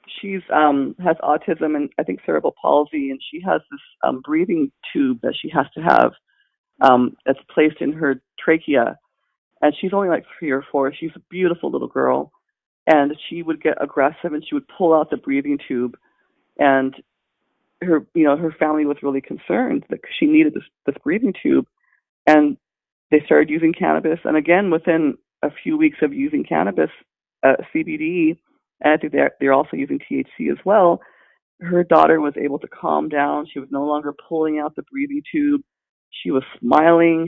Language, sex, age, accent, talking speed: English, female, 40-59, American, 180 wpm